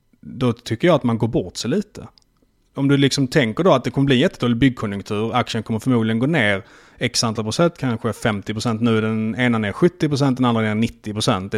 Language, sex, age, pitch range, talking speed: Swedish, male, 30-49, 110-135 Hz, 230 wpm